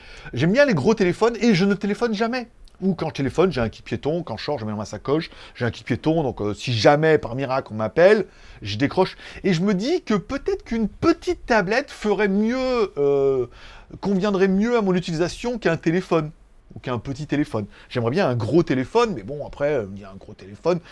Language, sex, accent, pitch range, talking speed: French, male, French, 135-215 Hz, 225 wpm